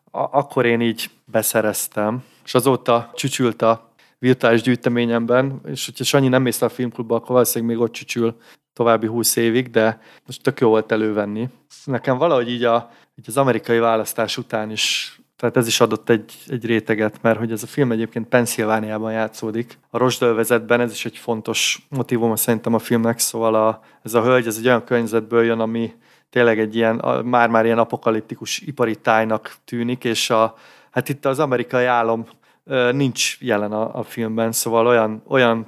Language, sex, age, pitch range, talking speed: Hungarian, male, 30-49, 115-125 Hz, 170 wpm